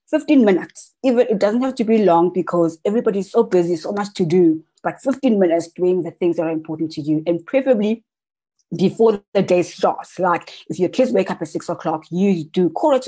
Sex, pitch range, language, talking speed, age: female, 160-195 Hz, English, 210 wpm, 20-39